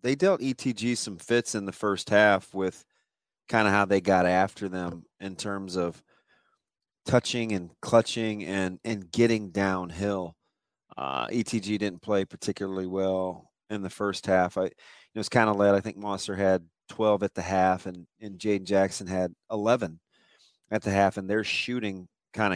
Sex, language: male, English